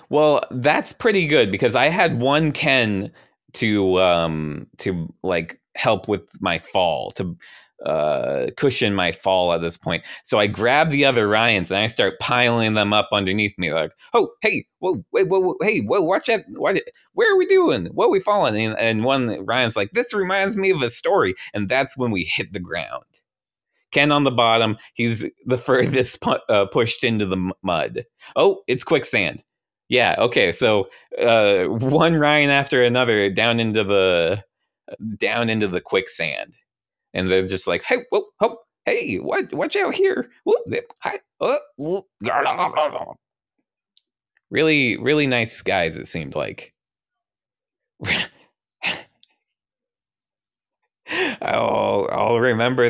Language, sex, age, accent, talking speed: English, male, 30-49, American, 150 wpm